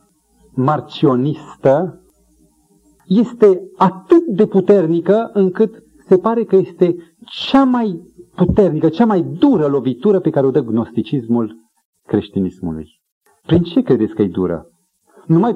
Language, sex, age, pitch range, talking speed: Romanian, male, 40-59, 135-210 Hz, 115 wpm